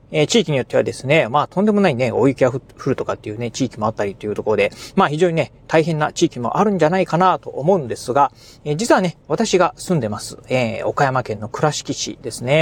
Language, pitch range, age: Japanese, 130-190 Hz, 40-59